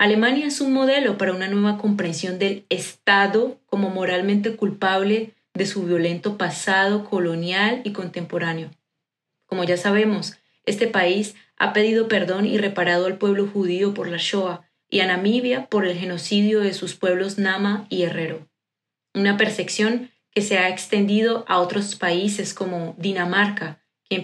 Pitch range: 175-210 Hz